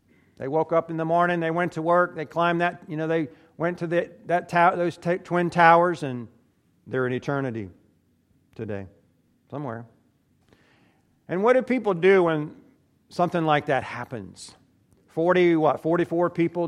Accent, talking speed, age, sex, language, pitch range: American, 160 wpm, 50-69, male, English, 130-175 Hz